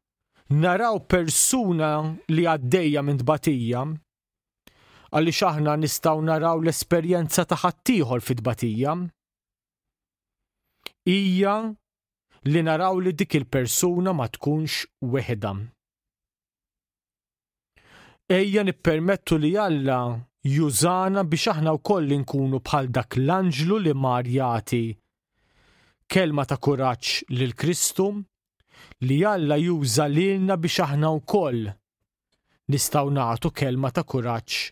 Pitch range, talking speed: 130-175 Hz, 95 wpm